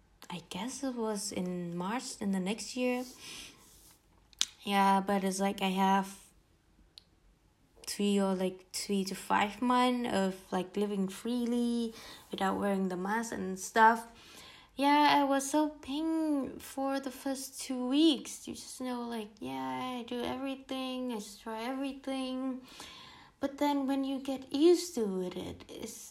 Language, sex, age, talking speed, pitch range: English, female, 20-39, 145 wpm, 195-270 Hz